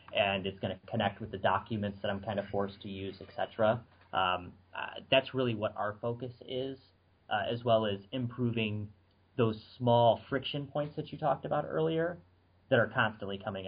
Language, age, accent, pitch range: English, 30-49, American, 100-125 Hz